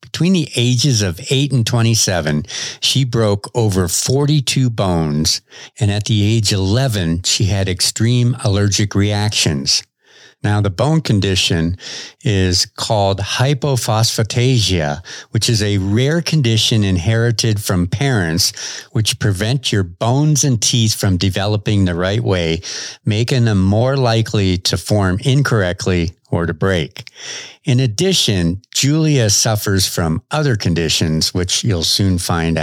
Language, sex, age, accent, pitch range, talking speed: English, male, 60-79, American, 95-125 Hz, 130 wpm